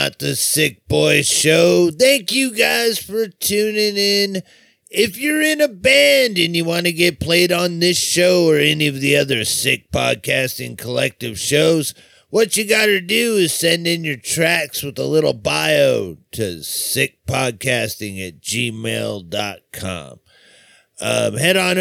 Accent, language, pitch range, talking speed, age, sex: American, English, 140-180 Hz, 145 wpm, 30-49, male